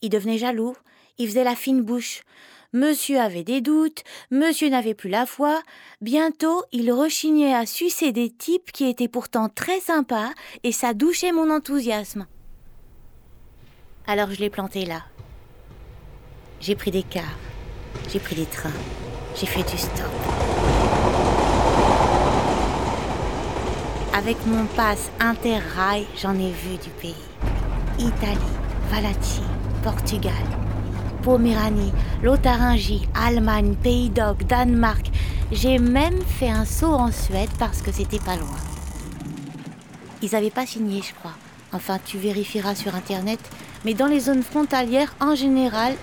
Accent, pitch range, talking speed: French, 165-260 Hz, 130 wpm